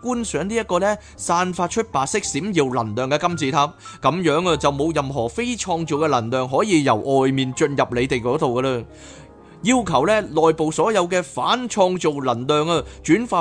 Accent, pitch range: native, 130-185 Hz